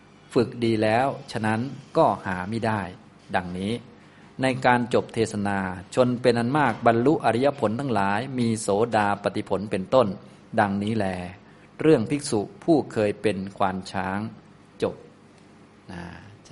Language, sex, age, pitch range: Thai, male, 20-39, 100-120 Hz